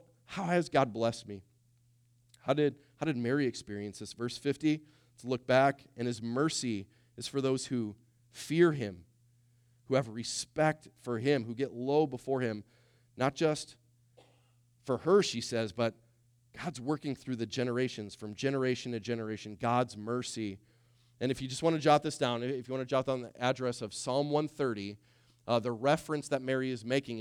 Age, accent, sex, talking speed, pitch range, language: 30-49, American, male, 175 wpm, 110-130 Hz, English